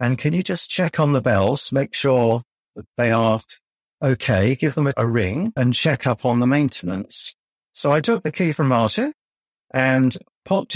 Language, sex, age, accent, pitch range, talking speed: English, male, 60-79, British, 120-150 Hz, 185 wpm